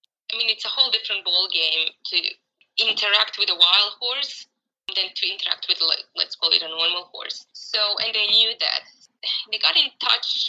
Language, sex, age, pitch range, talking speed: English, female, 20-39, 190-235 Hz, 195 wpm